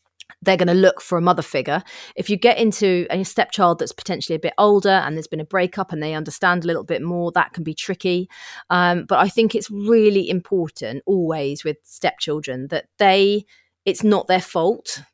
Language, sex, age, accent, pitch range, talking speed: English, female, 30-49, British, 155-190 Hz, 200 wpm